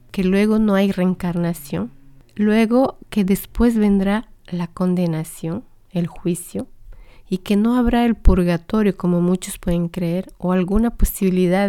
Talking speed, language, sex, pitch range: 135 wpm, Spanish, female, 175-210 Hz